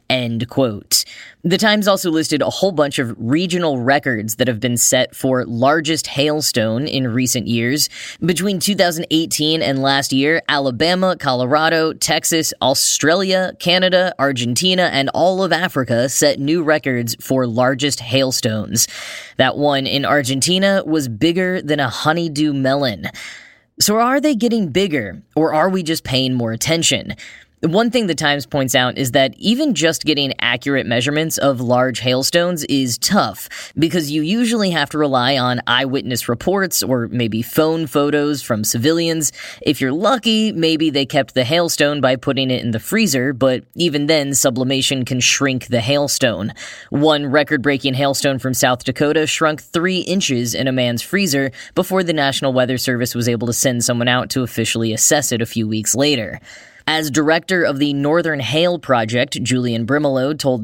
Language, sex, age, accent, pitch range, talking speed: English, female, 10-29, American, 125-160 Hz, 160 wpm